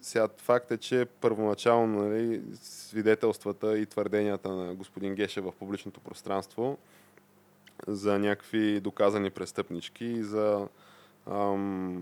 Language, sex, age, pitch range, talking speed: Bulgarian, male, 20-39, 95-110 Hz, 110 wpm